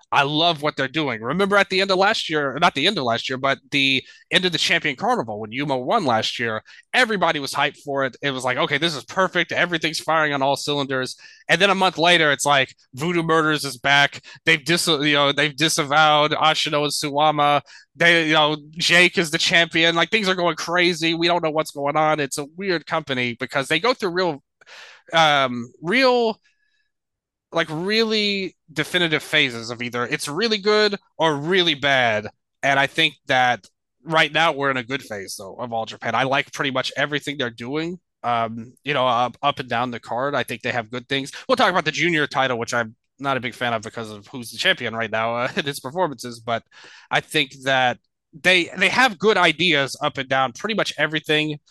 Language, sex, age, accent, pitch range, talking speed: English, male, 20-39, American, 135-170 Hz, 205 wpm